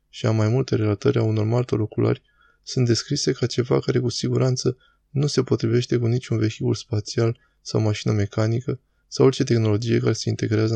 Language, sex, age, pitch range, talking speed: Romanian, male, 20-39, 115-130 Hz, 180 wpm